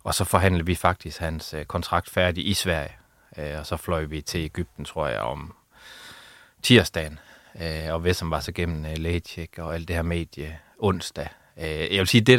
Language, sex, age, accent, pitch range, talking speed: Danish, male, 30-49, native, 80-100 Hz, 195 wpm